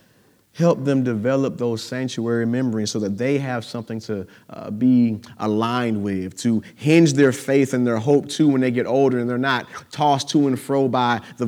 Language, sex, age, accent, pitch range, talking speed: English, male, 30-49, American, 115-140 Hz, 195 wpm